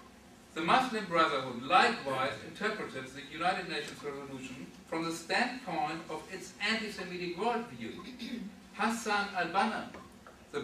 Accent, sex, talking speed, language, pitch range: German, male, 115 wpm, English, 160-220 Hz